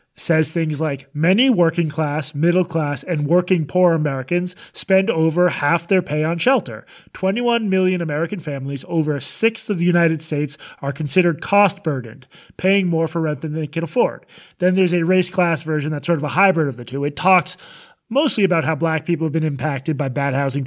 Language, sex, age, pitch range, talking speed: English, male, 30-49, 155-205 Hz, 195 wpm